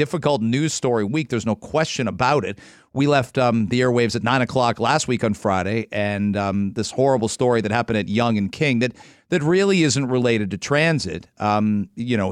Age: 40-59